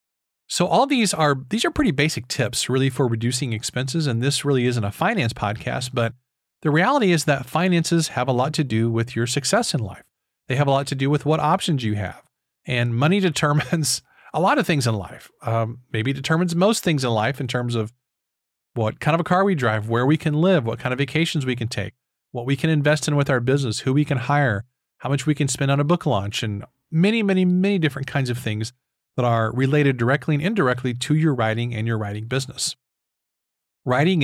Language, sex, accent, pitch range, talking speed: English, male, American, 120-155 Hz, 225 wpm